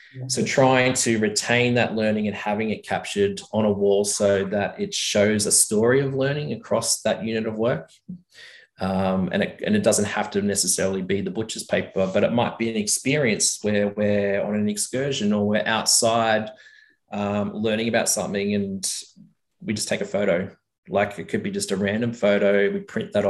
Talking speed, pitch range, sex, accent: 190 wpm, 100-130 Hz, male, Australian